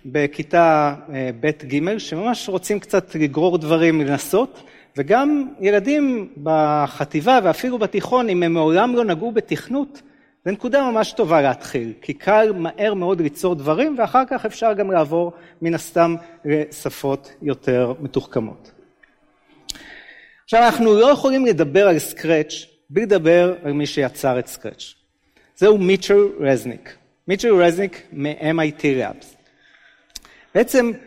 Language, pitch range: Hebrew, 150-215 Hz